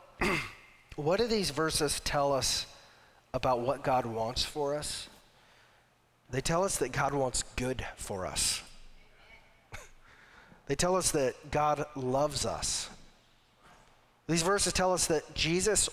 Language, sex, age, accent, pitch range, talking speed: English, male, 40-59, American, 130-160 Hz, 130 wpm